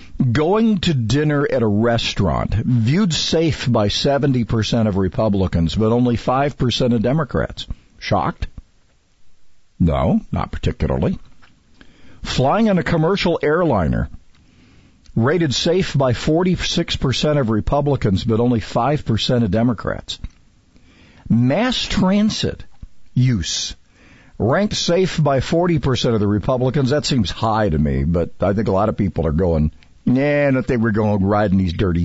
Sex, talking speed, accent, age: male, 130 wpm, American, 50-69